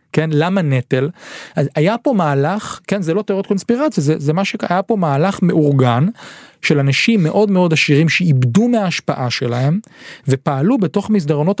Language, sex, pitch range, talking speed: Hebrew, male, 140-185 Hz, 155 wpm